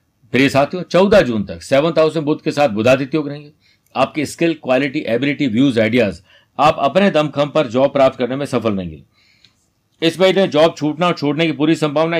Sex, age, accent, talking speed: male, 50-69, native, 160 wpm